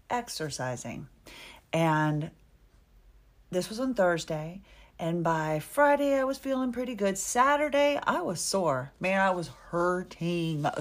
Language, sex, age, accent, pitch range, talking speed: English, female, 40-59, American, 155-205 Hz, 120 wpm